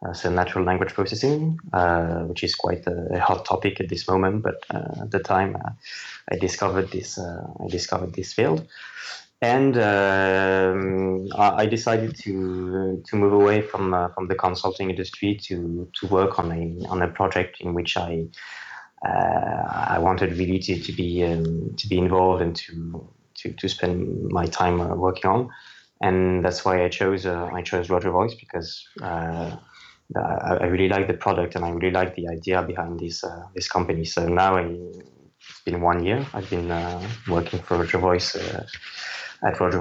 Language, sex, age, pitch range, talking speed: English, male, 20-39, 85-95 Hz, 185 wpm